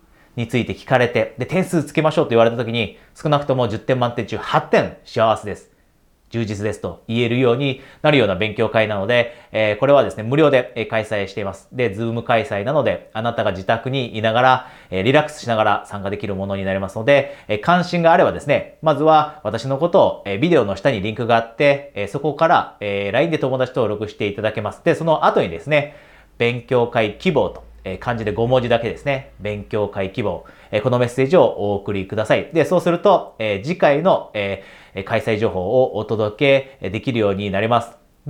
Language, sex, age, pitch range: Japanese, male, 40-59, 105-140 Hz